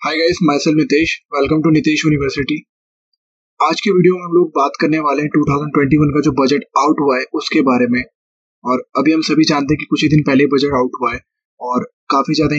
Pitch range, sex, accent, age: 130-155 Hz, male, native, 20-39